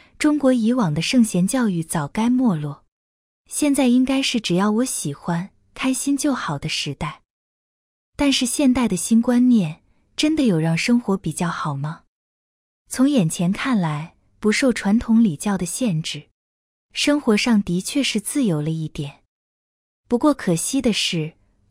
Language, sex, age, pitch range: Chinese, female, 20-39, 165-255 Hz